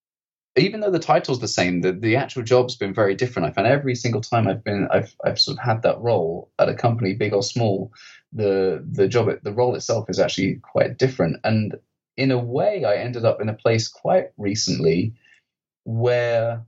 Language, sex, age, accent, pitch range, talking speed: English, male, 30-49, British, 100-125 Hz, 200 wpm